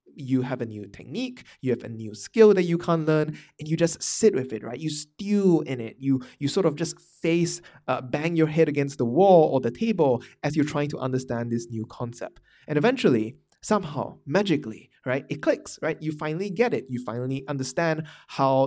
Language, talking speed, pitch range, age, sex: English, 210 wpm, 125-165 Hz, 20-39, male